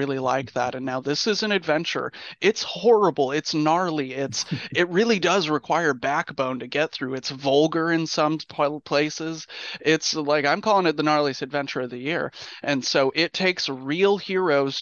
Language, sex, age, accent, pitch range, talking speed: English, male, 30-49, American, 135-155 Hz, 180 wpm